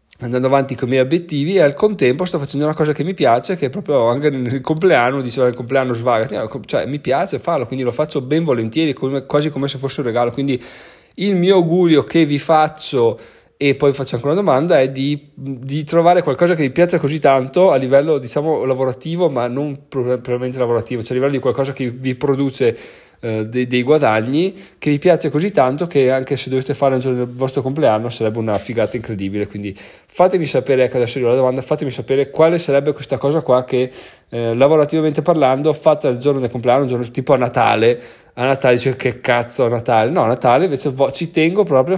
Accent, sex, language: native, male, Italian